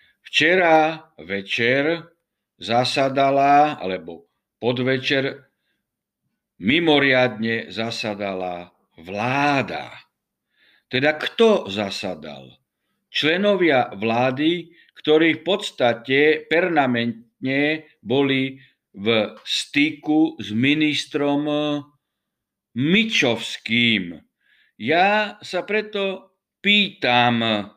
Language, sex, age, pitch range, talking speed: Slovak, male, 60-79, 125-165 Hz, 60 wpm